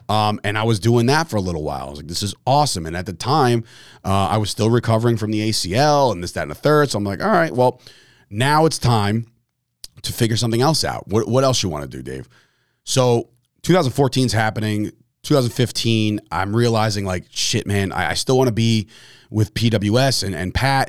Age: 30-49